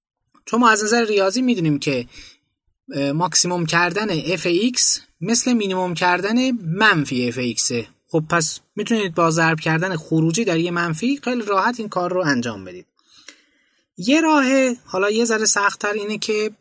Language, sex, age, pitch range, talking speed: Persian, male, 20-39, 150-210 Hz, 150 wpm